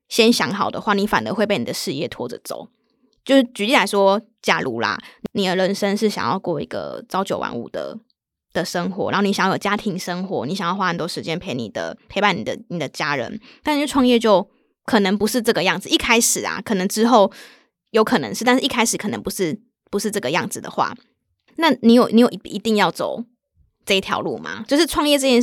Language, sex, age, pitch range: Chinese, female, 20-39, 195-240 Hz